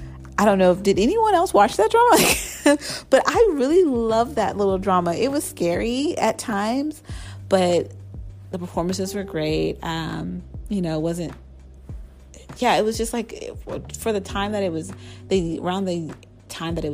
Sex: female